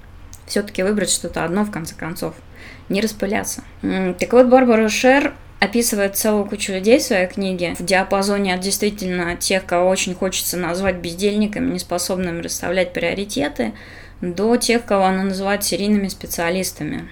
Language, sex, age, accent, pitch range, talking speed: Russian, female, 20-39, native, 180-215 Hz, 140 wpm